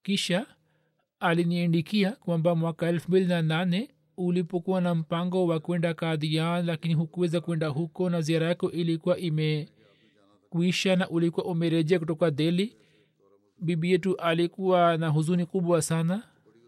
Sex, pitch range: male, 160-180 Hz